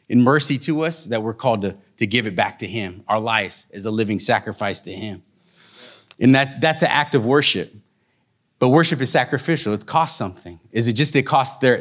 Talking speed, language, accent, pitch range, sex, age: 215 wpm, English, American, 120-145 Hz, male, 30-49